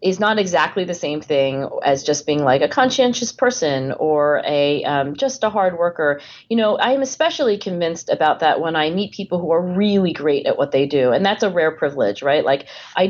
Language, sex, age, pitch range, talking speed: English, female, 30-49, 145-190 Hz, 220 wpm